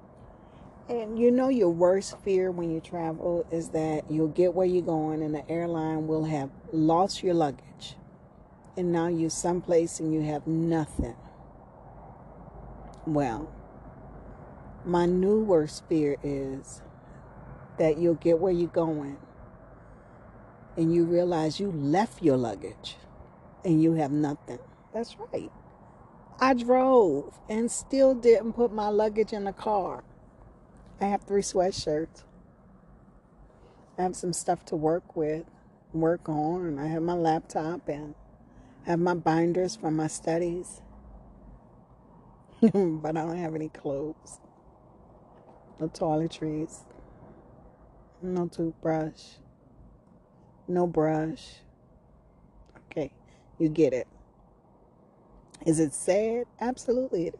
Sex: female